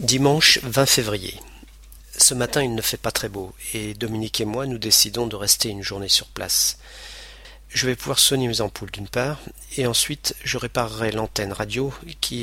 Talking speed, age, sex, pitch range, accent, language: 185 wpm, 40-59, male, 100-120 Hz, French, French